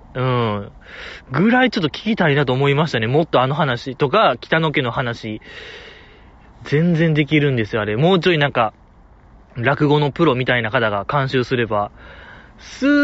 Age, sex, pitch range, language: 20-39, male, 115-170 Hz, Japanese